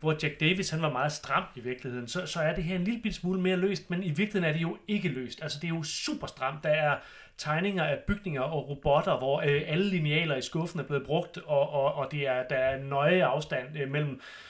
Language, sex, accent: English, male, Danish